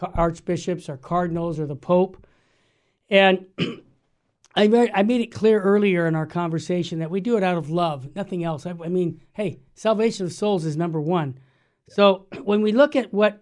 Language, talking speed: English, 175 wpm